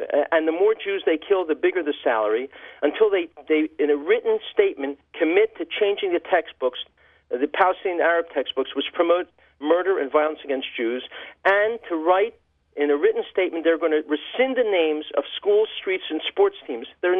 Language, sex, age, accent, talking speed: English, male, 50-69, American, 180 wpm